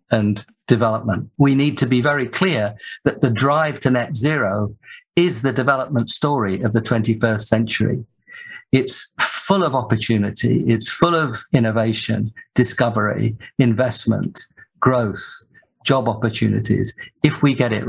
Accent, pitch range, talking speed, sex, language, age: British, 110-140 Hz, 130 wpm, male, English, 50-69